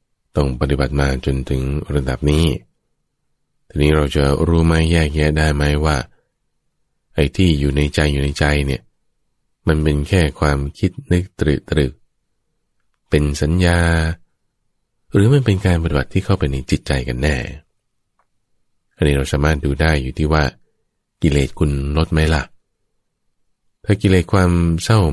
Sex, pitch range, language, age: male, 70-85 Hz, English, 20-39